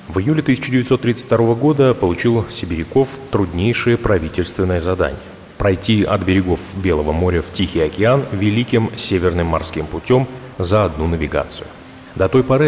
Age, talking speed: 30-49, 130 wpm